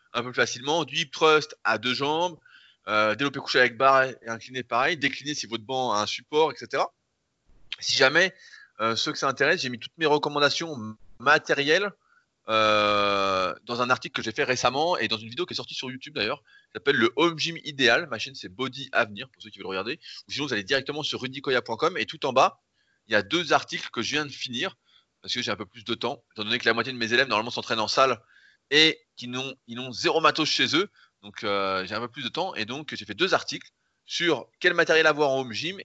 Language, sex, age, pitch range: French, male, 20-39, 110-140 Hz